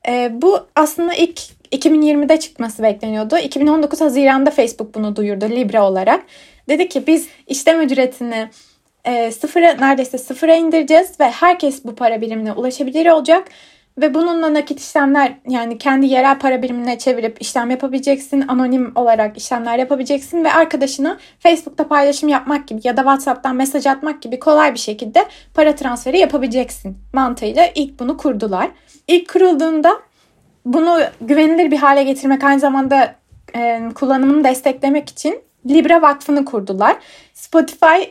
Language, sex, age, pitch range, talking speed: Turkish, female, 20-39, 255-315 Hz, 135 wpm